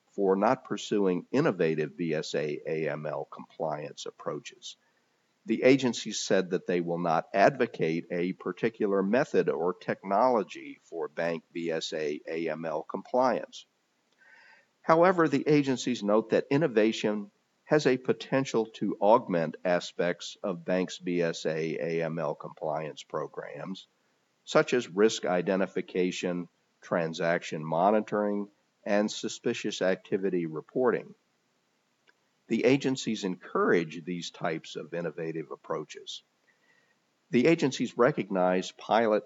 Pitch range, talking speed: 85-115 Hz, 100 wpm